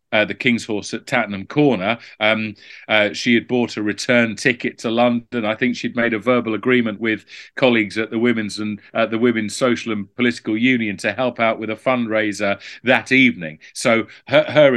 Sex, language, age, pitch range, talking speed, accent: male, English, 40-59, 105-120 Hz, 195 wpm, British